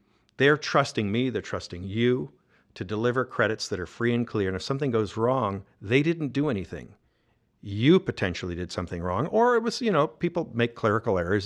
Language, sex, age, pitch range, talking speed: English, male, 50-69, 105-135 Hz, 195 wpm